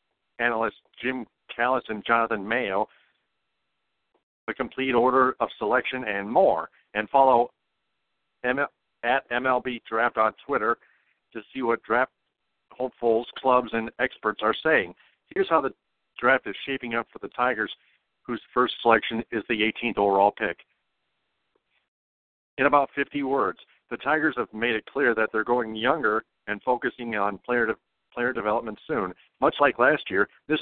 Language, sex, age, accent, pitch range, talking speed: English, male, 50-69, American, 110-130 Hz, 150 wpm